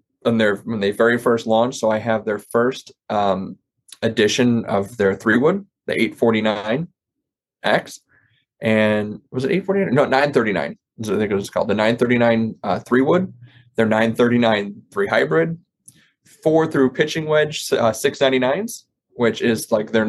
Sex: male